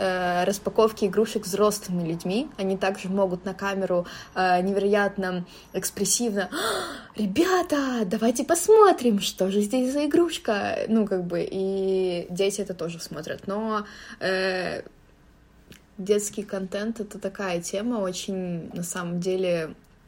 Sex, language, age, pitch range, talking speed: female, Russian, 20-39, 185-215 Hz, 115 wpm